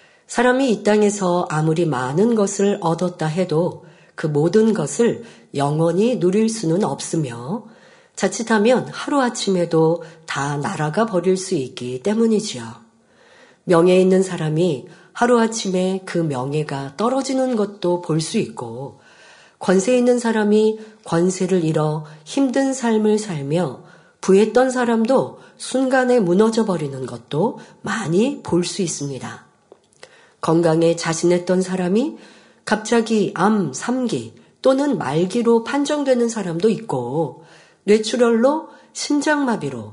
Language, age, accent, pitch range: Korean, 40-59, native, 165-225 Hz